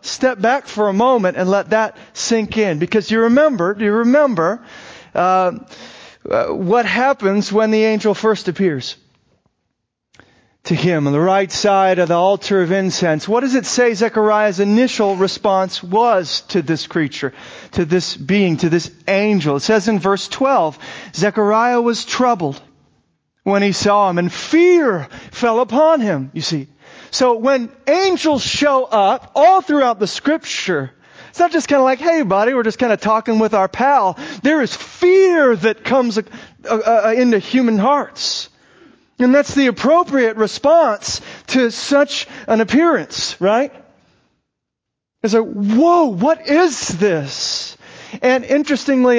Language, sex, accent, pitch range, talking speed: English, male, American, 195-260 Hz, 150 wpm